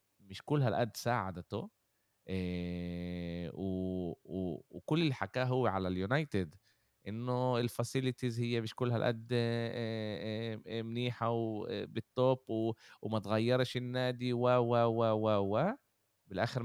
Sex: male